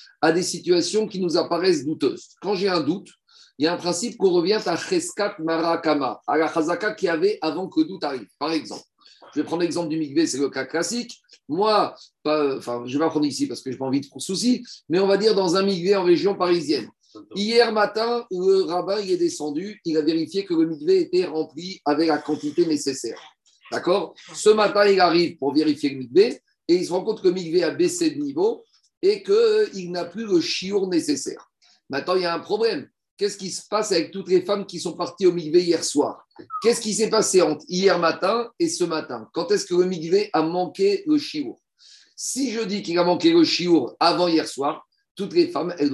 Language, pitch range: French, 165-245 Hz